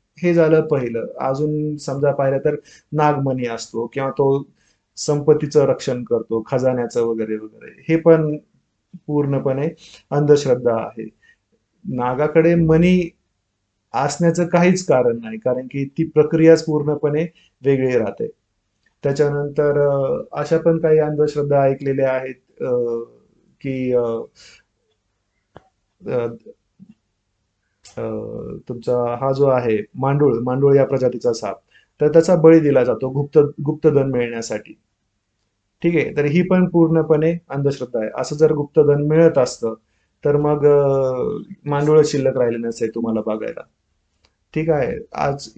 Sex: male